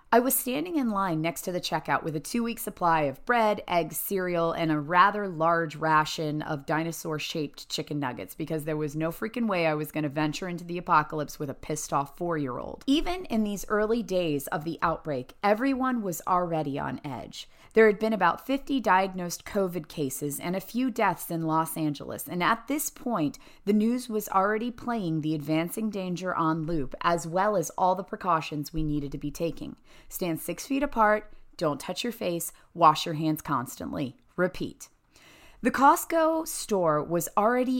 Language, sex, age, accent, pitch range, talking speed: English, female, 30-49, American, 155-220 Hz, 185 wpm